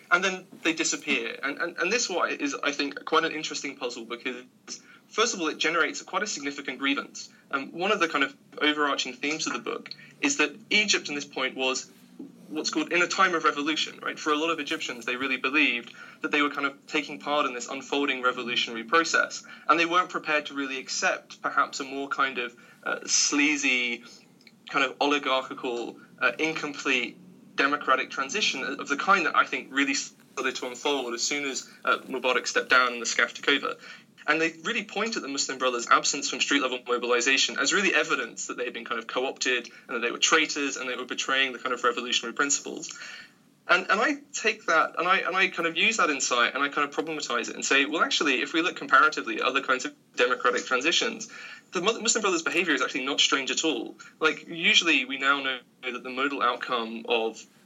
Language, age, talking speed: English, 20-39, 215 wpm